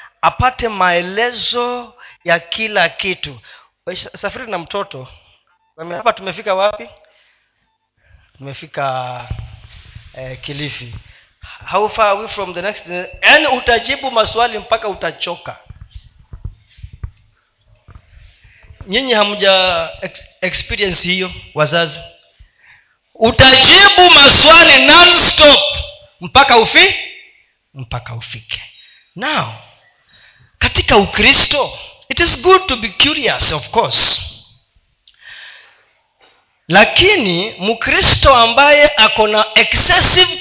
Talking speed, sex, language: 85 wpm, male, Swahili